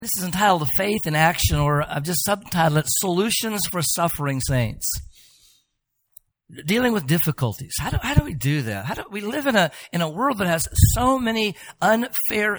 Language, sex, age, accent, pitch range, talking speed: English, male, 50-69, American, 140-215 Hz, 190 wpm